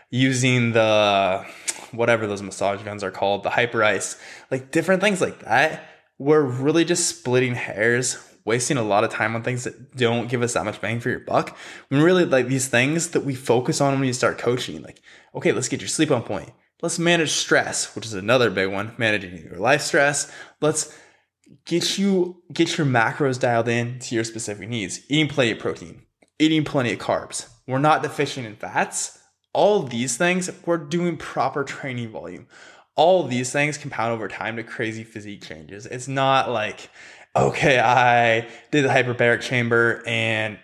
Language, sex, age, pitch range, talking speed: English, male, 20-39, 115-150 Hz, 180 wpm